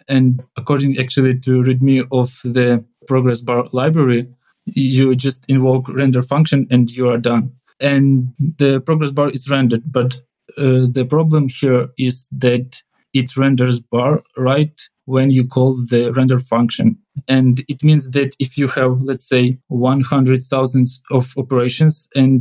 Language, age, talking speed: English, 20-39, 145 wpm